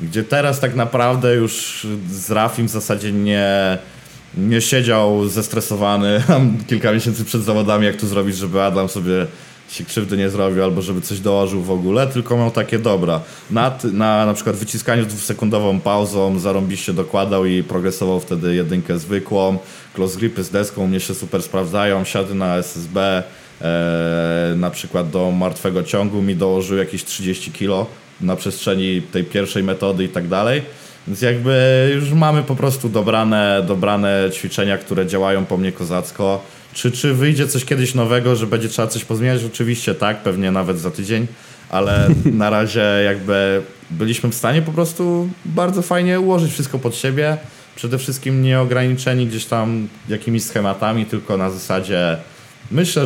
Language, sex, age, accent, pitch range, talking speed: Polish, male, 20-39, native, 95-120 Hz, 155 wpm